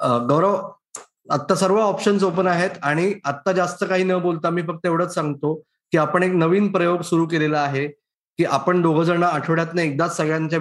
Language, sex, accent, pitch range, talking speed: Marathi, male, native, 165-215 Hz, 170 wpm